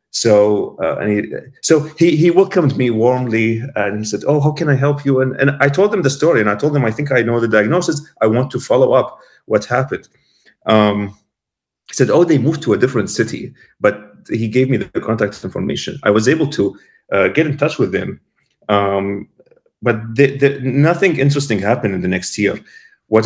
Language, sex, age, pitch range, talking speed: English, male, 30-49, 105-145 Hz, 210 wpm